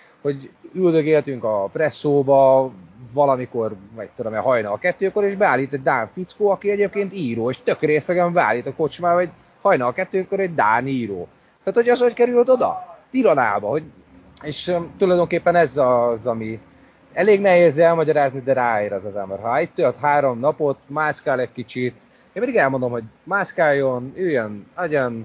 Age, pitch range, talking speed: 30-49, 115-175 Hz, 160 wpm